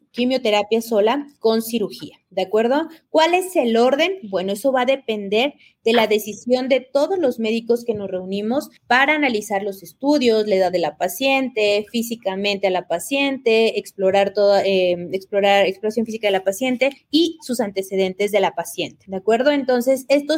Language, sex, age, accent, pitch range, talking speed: Spanish, female, 30-49, Mexican, 200-250 Hz, 170 wpm